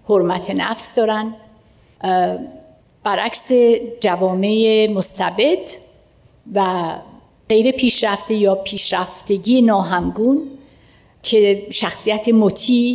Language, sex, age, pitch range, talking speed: Persian, female, 60-79, 195-245 Hz, 70 wpm